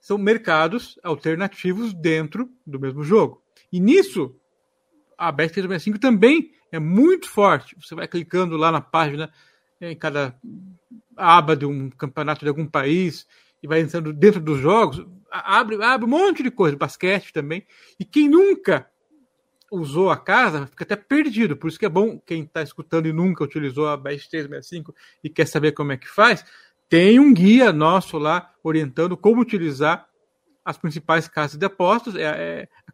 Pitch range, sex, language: 155-210 Hz, male, Portuguese